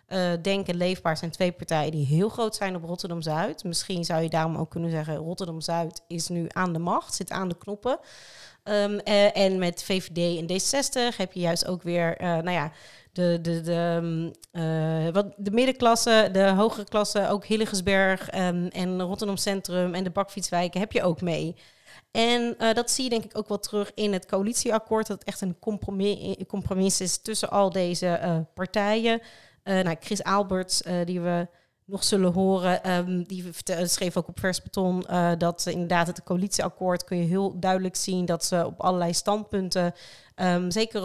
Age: 40-59